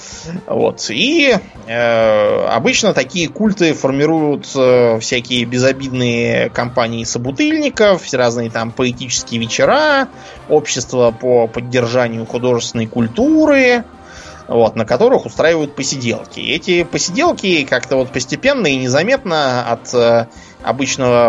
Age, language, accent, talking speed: 20-39, Russian, native, 105 wpm